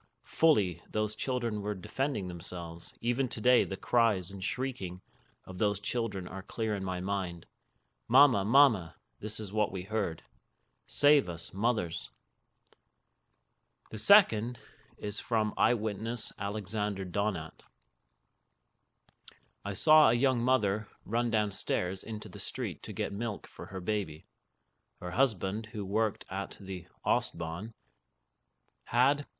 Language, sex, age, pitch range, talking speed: English, male, 30-49, 95-115 Hz, 125 wpm